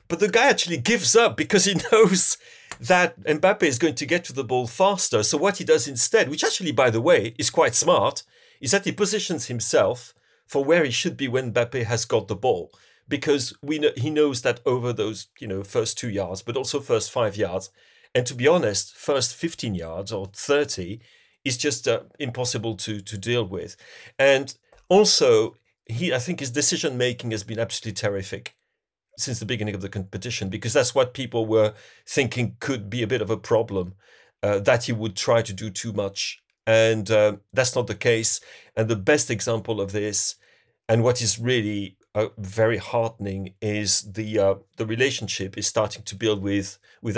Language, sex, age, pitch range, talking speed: English, male, 40-59, 100-135 Hz, 190 wpm